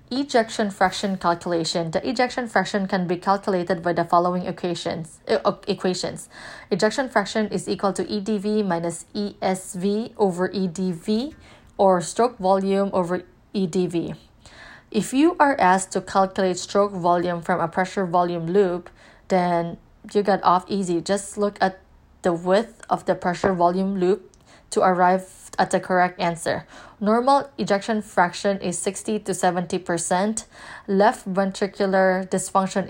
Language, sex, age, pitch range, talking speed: English, female, 20-39, 180-210 Hz, 135 wpm